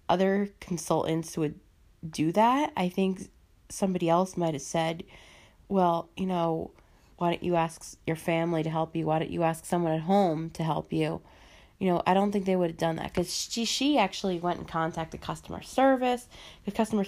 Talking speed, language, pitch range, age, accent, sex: 195 wpm, English, 160-190 Hz, 20-39, American, female